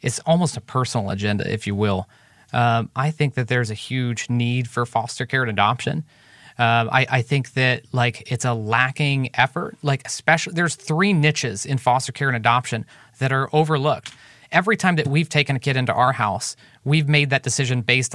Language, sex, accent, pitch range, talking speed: English, male, American, 125-150 Hz, 195 wpm